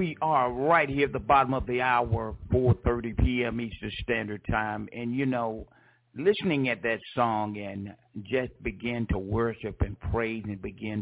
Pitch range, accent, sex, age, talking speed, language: 105-125 Hz, American, male, 50-69, 170 wpm, English